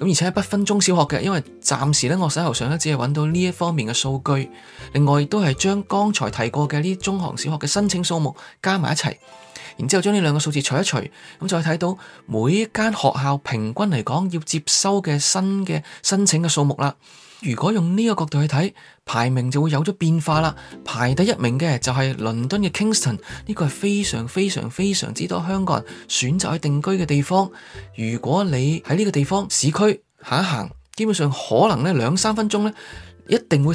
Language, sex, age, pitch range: Chinese, male, 20-39, 135-190 Hz